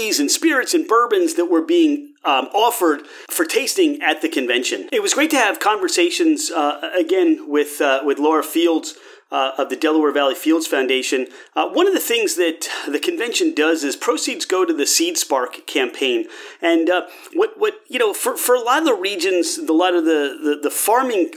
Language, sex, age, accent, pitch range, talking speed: English, male, 30-49, American, 225-375 Hz, 200 wpm